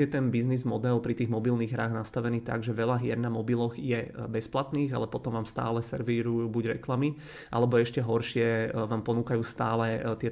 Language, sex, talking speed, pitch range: Czech, male, 175 wpm, 115-125 Hz